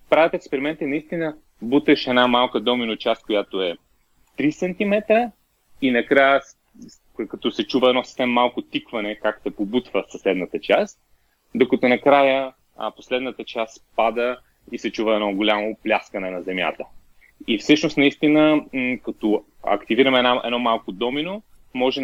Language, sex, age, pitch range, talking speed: Bulgarian, male, 30-49, 110-140 Hz, 130 wpm